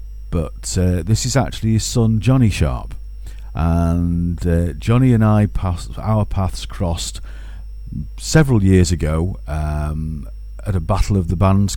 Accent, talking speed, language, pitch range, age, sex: British, 145 wpm, English, 80-105 Hz, 50-69, male